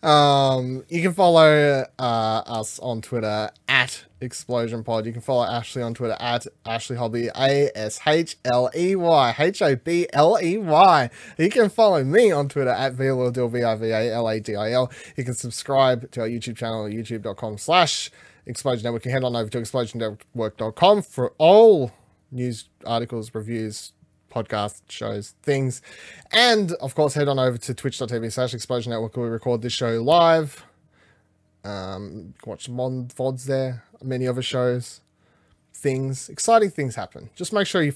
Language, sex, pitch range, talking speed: English, male, 115-140 Hz, 150 wpm